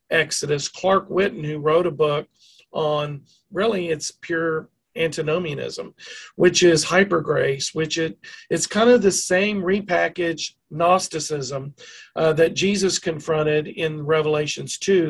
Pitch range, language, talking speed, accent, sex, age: 150-180 Hz, English, 125 wpm, American, male, 50-69